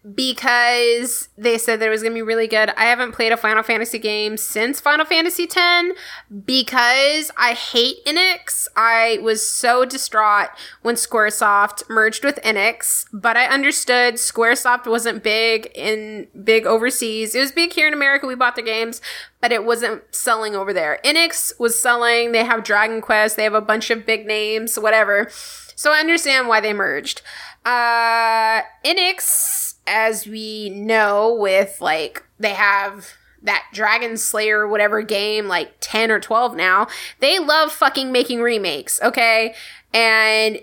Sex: female